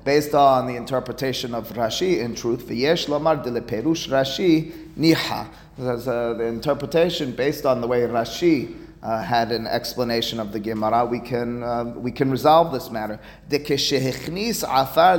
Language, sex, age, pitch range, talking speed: English, male, 30-49, 120-160 Hz, 160 wpm